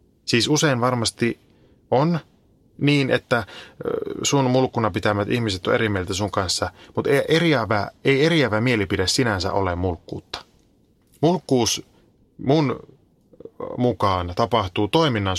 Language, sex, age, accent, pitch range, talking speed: Finnish, male, 30-49, native, 100-135 Hz, 115 wpm